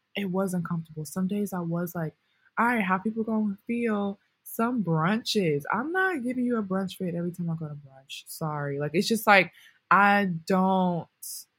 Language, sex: English, female